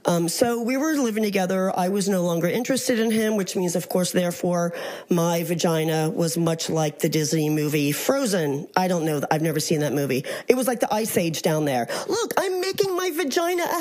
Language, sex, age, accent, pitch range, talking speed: English, female, 40-59, American, 165-245 Hz, 215 wpm